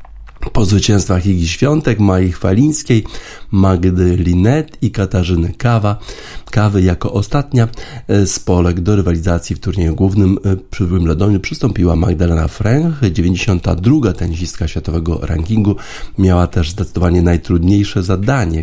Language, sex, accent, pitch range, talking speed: Polish, male, native, 85-110 Hz, 115 wpm